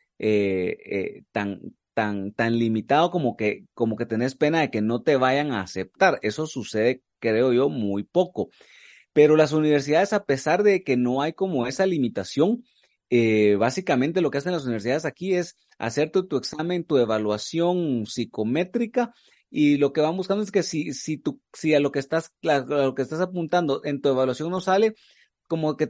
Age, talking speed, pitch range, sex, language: 30-49, 185 wpm, 115-175 Hz, male, Spanish